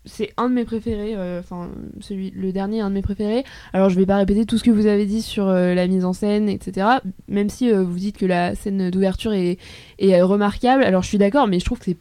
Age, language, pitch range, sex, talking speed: 20-39, French, 180-220 Hz, female, 265 wpm